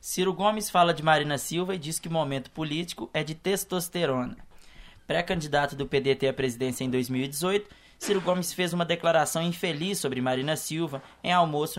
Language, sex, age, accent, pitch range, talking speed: Portuguese, male, 20-39, Brazilian, 135-170 Hz, 170 wpm